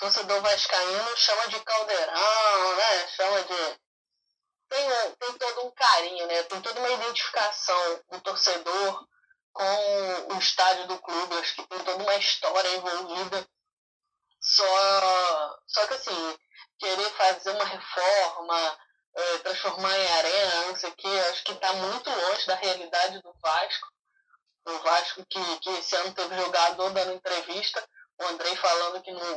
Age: 10-29